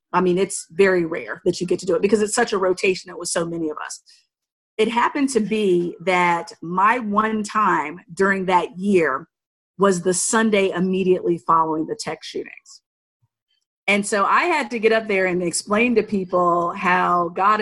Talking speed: 185 wpm